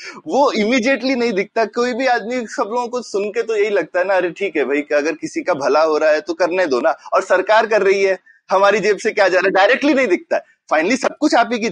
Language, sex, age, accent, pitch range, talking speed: Hindi, male, 20-39, native, 190-260 Hz, 270 wpm